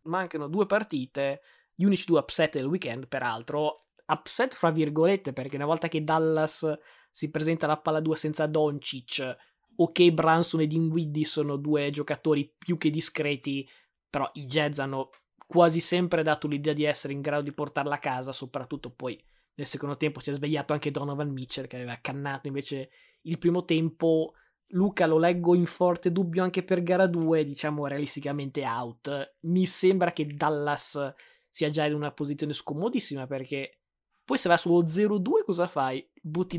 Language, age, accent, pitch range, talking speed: Italian, 20-39, native, 145-170 Hz, 165 wpm